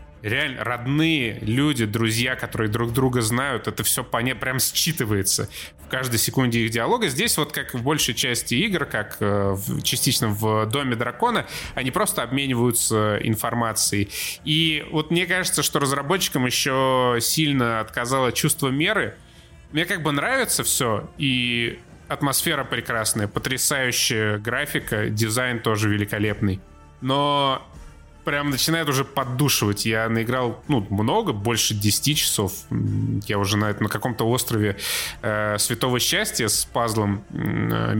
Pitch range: 110-140 Hz